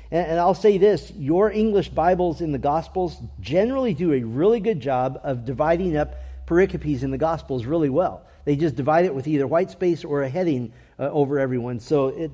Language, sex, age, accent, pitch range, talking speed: English, male, 40-59, American, 120-170 Hz, 200 wpm